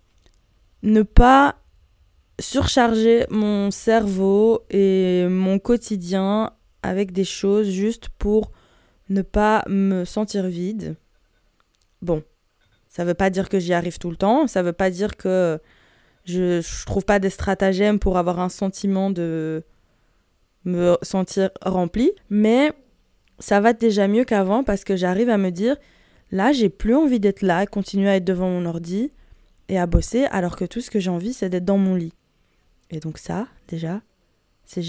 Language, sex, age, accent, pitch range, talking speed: French, female, 20-39, French, 185-225 Hz, 165 wpm